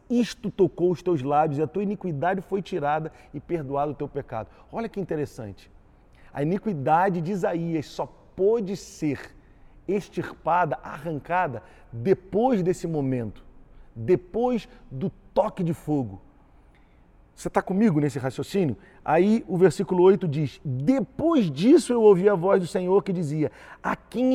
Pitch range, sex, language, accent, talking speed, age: 145-195 Hz, male, Portuguese, Brazilian, 145 wpm, 40-59